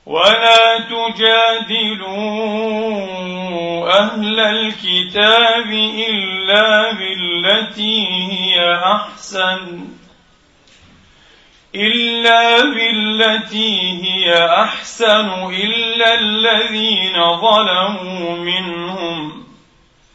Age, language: 40-59, Arabic